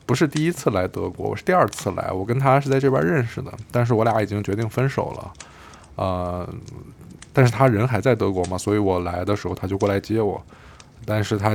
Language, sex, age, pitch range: Chinese, male, 20-39, 95-125 Hz